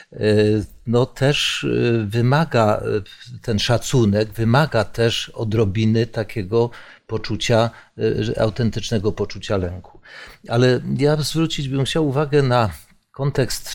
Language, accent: Polish, native